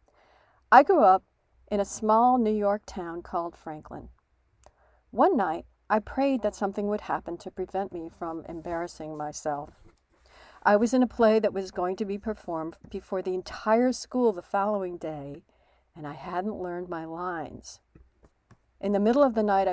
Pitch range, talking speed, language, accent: 170-220 Hz, 165 wpm, English, American